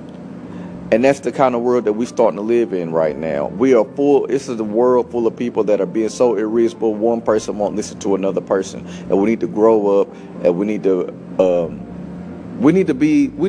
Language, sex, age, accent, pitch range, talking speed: English, male, 40-59, American, 105-150 Hz, 230 wpm